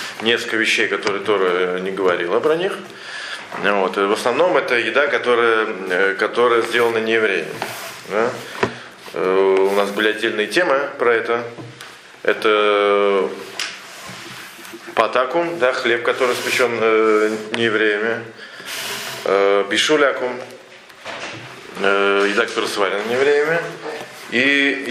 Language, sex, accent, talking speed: Russian, male, native, 95 wpm